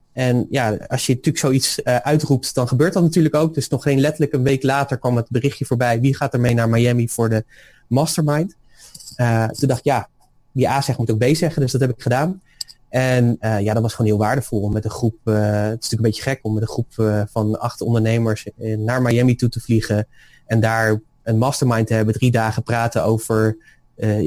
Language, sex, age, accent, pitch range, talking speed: Dutch, male, 20-39, Dutch, 110-135 Hz, 225 wpm